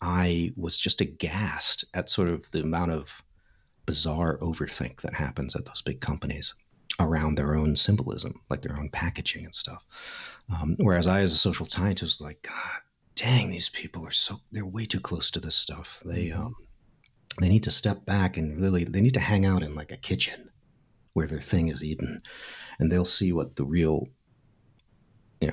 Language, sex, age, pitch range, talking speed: English, male, 40-59, 75-100 Hz, 190 wpm